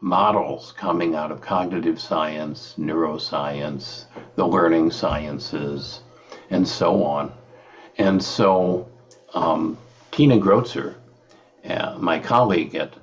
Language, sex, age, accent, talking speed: English, male, 60-79, American, 100 wpm